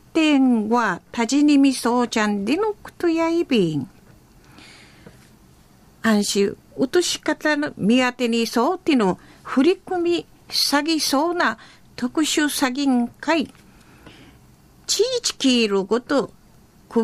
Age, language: 50-69, Japanese